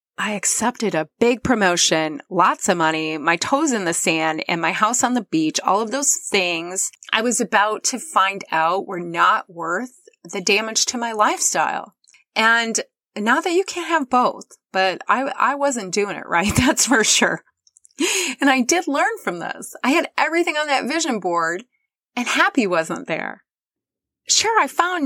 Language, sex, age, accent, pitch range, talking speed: English, female, 30-49, American, 180-275 Hz, 175 wpm